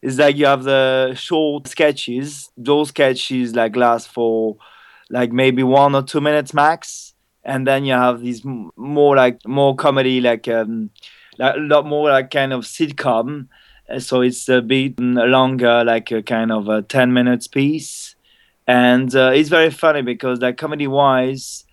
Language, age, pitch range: English, 20-39, 120-135 Hz